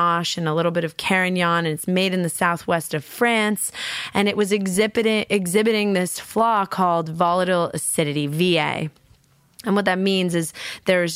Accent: American